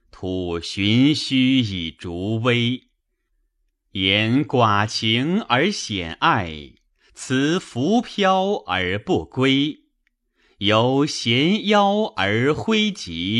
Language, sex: Chinese, male